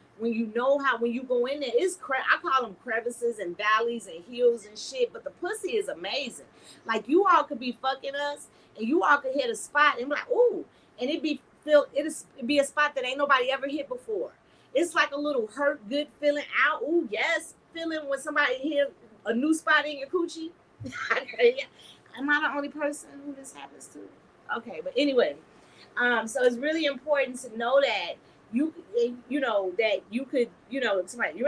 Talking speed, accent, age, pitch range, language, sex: 205 wpm, American, 30-49, 240-320 Hz, English, female